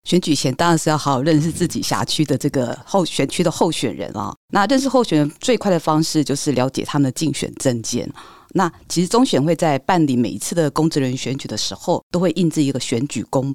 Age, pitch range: 50-69, 135-170 Hz